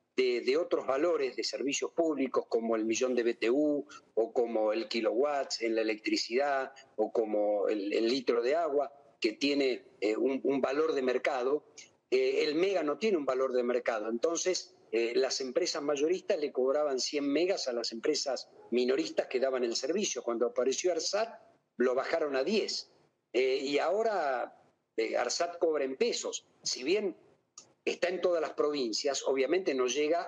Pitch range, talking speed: 120-200 Hz, 170 wpm